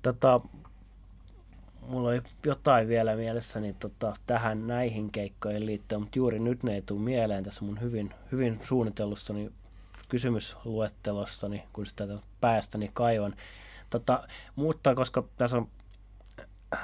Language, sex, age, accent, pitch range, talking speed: Finnish, male, 30-49, native, 95-120 Hz, 120 wpm